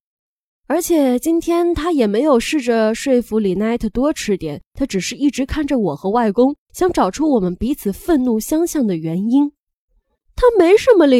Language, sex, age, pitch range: Chinese, female, 20-39, 220-320 Hz